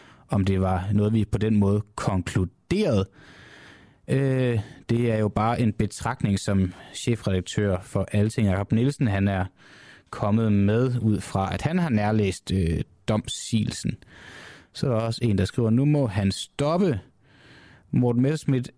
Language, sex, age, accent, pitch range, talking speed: Danish, male, 20-39, native, 100-130 Hz, 155 wpm